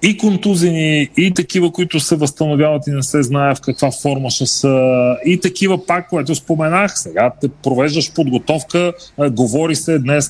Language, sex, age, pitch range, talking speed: Bulgarian, male, 40-59, 135-165 Hz, 170 wpm